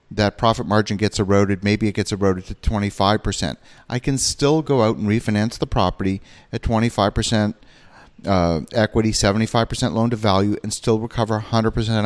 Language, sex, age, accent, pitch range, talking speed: English, male, 40-59, American, 105-125 Hz, 160 wpm